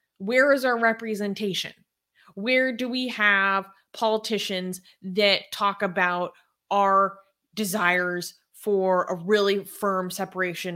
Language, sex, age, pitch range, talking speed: English, female, 20-39, 180-220 Hz, 105 wpm